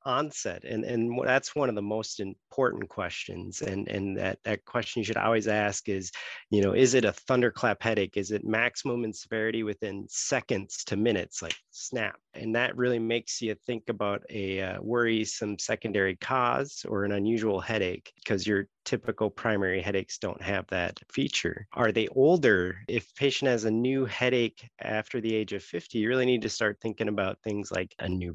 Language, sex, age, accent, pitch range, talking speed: English, male, 30-49, American, 100-115 Hz, 185 wpm